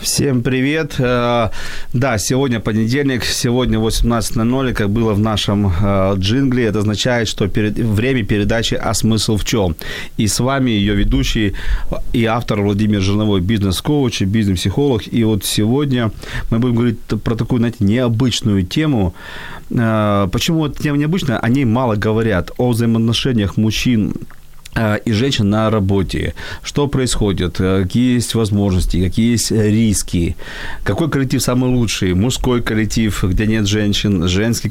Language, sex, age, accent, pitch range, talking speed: Ukrainian, male, 40-59, native, 100-120 Hz, 130 wpm